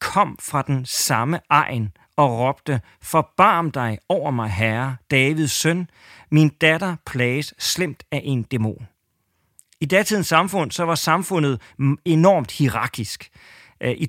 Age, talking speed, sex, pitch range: 40-59, 130 wpm, male, 130-175 Hz